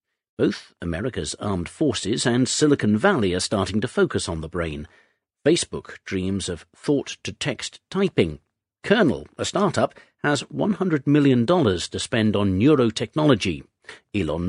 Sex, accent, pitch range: male, British, 90-130 Hz